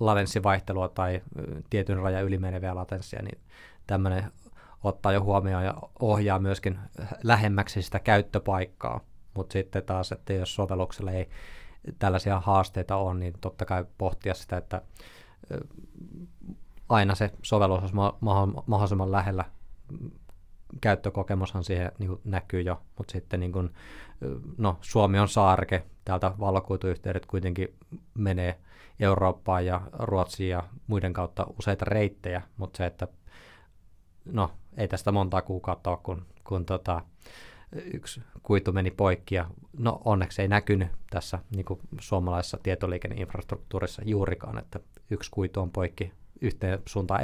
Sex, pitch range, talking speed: male, 90-105 Hz, 120 wpm